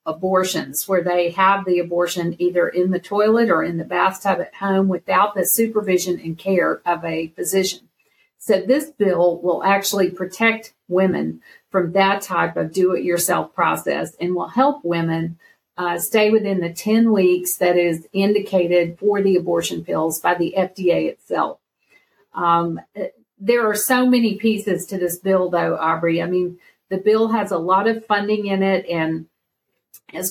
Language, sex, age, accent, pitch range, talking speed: English, female, 50-69, American, 175-205 Hz, 165 wpm